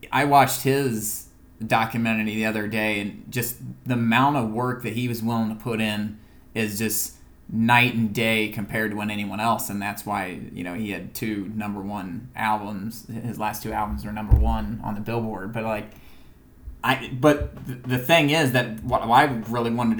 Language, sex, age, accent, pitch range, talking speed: English, male, 20-39, American, 110-125 Hz, 185 wpm